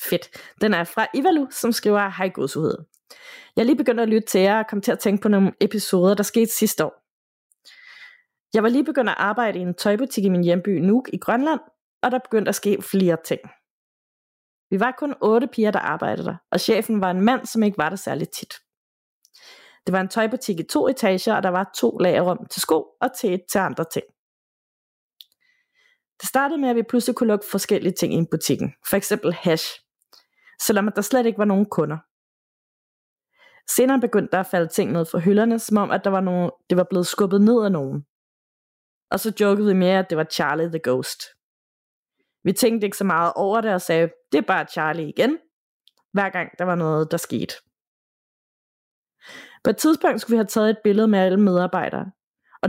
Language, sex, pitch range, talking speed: Danish, female, 185-235 Hz, 205 wpm